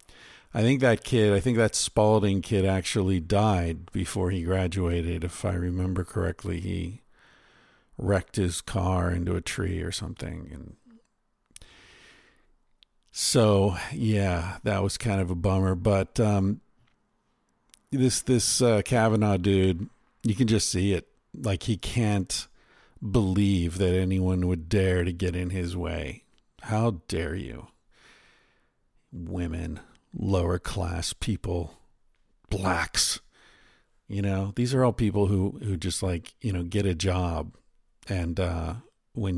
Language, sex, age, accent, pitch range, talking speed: English, male, 50-69, American, 90-105 Hz, 135 wpm